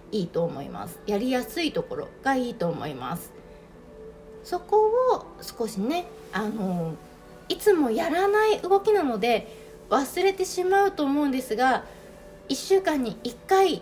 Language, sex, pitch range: Japanese, female, 200-320 Hz